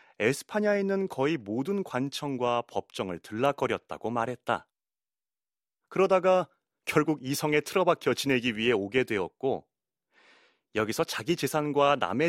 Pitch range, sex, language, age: 115-180 Hz, male, Korean, 30-49